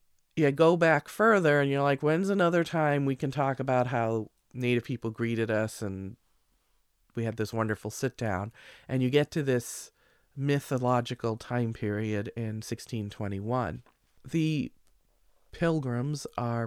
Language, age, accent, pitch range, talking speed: English, 40-59, American, 115-155 Hz, 135 wpm